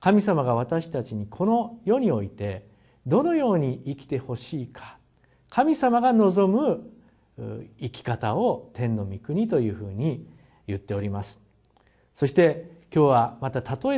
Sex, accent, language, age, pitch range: male, native, Japanese, 50-69, 110-150 Hz